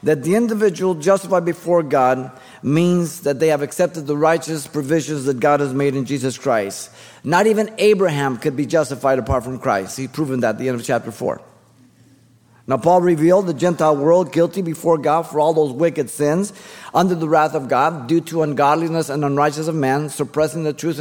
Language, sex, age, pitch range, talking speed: English, male, 50-69, 145-175 Hz, 195 wpm